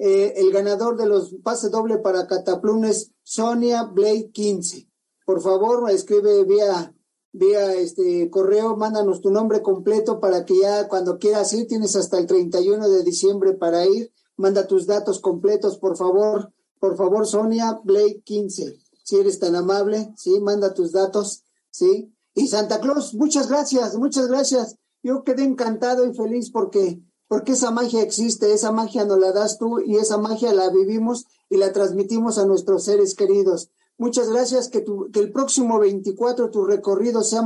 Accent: Mexican